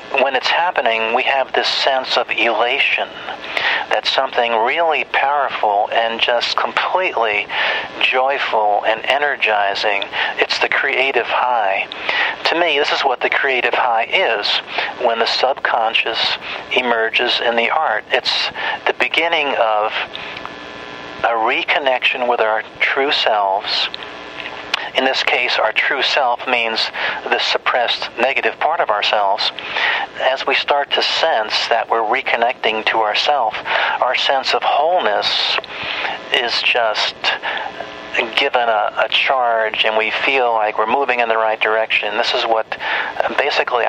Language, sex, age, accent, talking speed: English, male, 50-69, American, 130 wpm